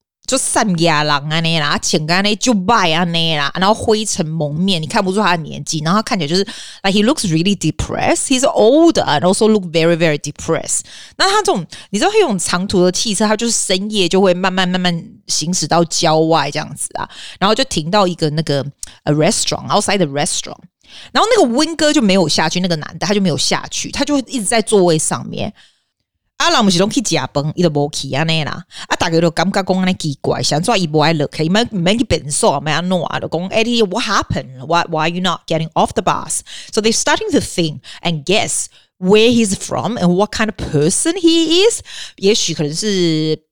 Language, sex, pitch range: Chinese, female, 160-210 Hz